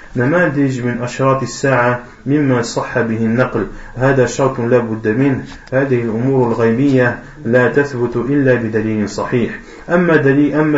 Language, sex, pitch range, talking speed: French, male, 120-135 Hz, 130 wpm